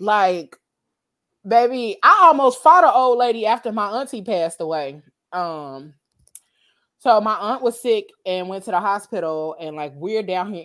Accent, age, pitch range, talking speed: American, 20-39, 165-225 Hz, 165 wpm